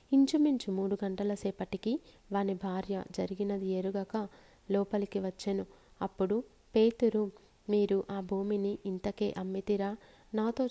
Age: 30-49